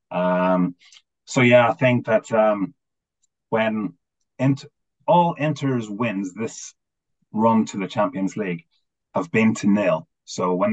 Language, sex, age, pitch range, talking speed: English, male, 30-49, 90-130 Hz, 130 wpm